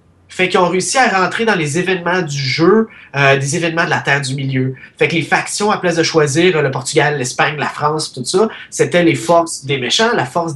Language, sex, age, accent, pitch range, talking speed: French, male, 30-49, Canadian, 130-175 Hz, 235 wpm